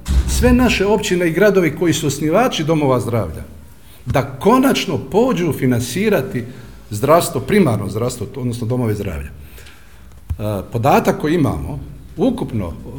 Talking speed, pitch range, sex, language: 110 wpm, 115-165 Hz, male, Croatian